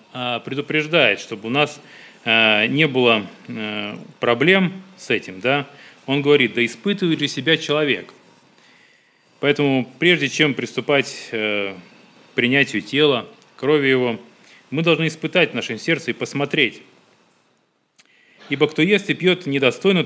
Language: Russian